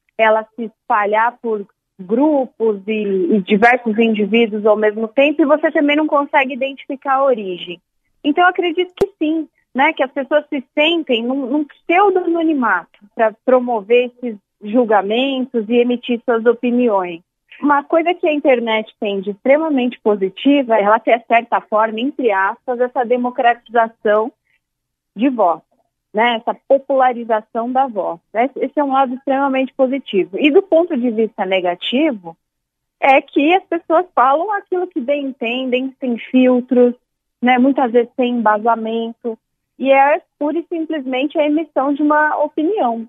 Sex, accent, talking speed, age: female, Brazilian, 150 wpm, 30-49